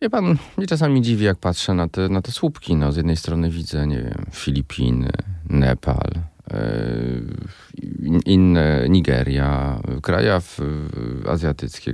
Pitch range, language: 80-95 Hz, Polish